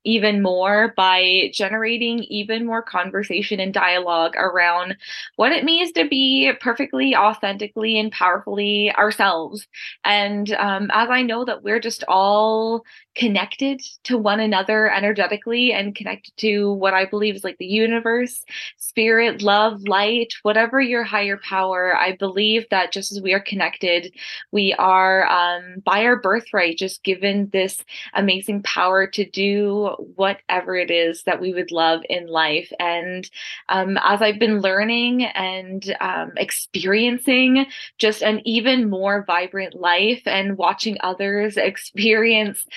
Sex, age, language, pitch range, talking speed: female, 20-39, English, 190-225 Hz, 140 wpm